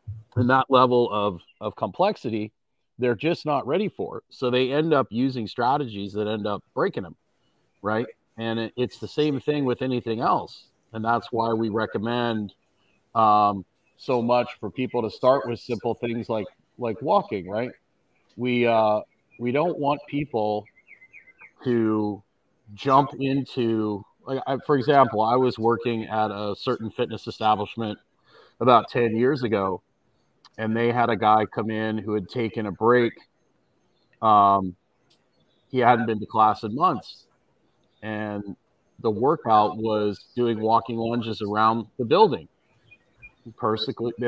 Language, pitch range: English, 110-130 Hz